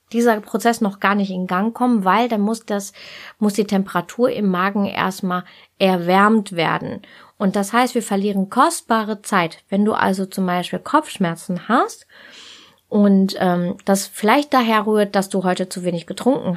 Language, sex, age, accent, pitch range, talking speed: German, female, 20-39, German, 185-230 Hz, 165 wpm